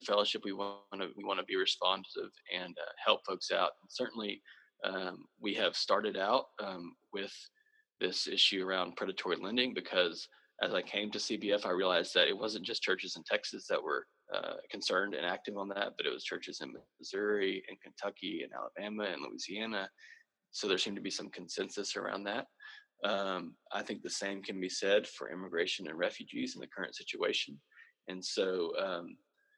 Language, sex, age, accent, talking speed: English, male, 20-39, American, 185 wpm